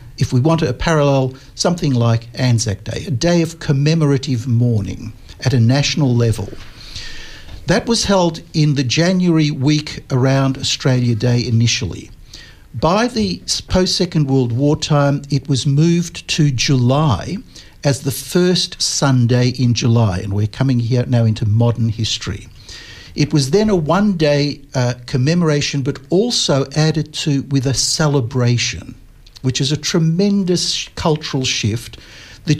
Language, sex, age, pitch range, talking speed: English, male, 60-79, 120-155 Hz, 140 wpm